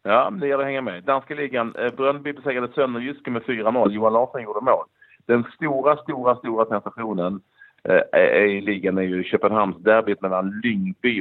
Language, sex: Swedish, male